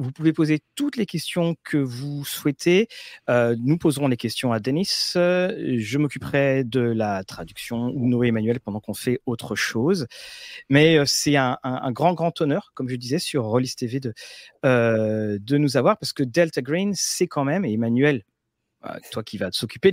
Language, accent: French, French